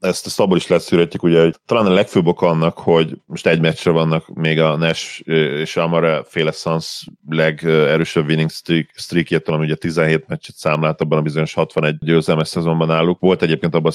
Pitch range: 80-85 Hz